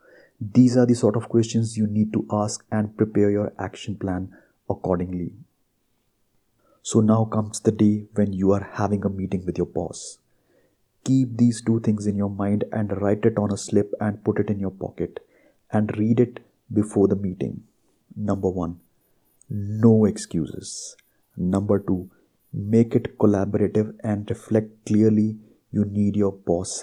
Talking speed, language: 160 wpm, Hindi